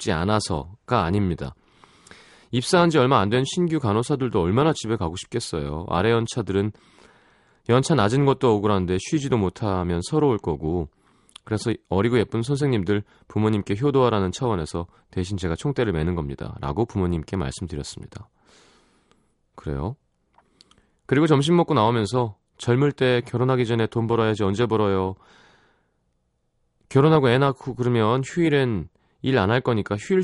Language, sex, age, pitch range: Korean, male, 30-49, 95-130 Hz